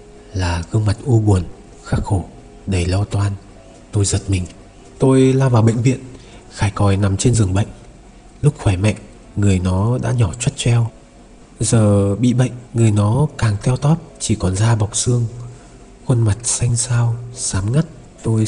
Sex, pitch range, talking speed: male, 100-125 Hz, 170 wpm